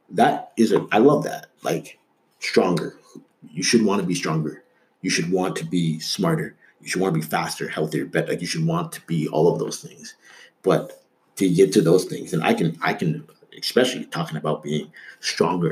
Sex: male